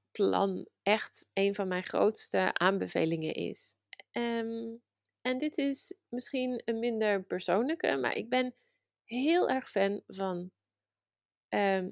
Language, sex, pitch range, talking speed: Dutch, female, 190-235 Hz, 120 wpm